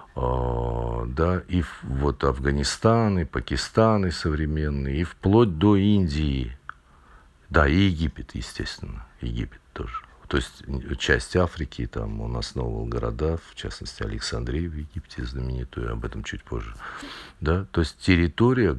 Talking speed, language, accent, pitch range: 125 wpm, Russian, native, 70-90 Hz